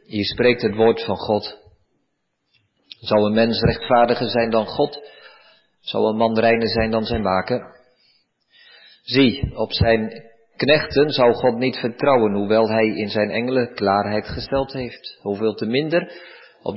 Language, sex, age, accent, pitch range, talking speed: Dutch, male, 40-59, Dutch, 110-130 Hz, 145 wpm